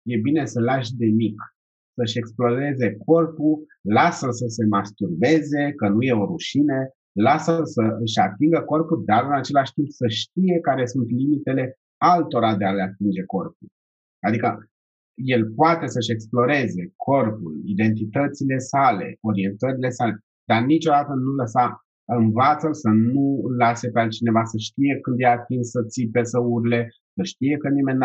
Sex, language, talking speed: male, Romanian, 150 wpm